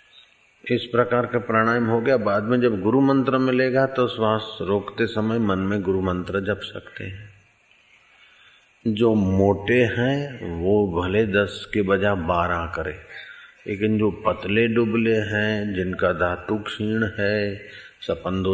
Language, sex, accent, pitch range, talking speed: Hindi, male, native, 100-125 Hz, 140 wpm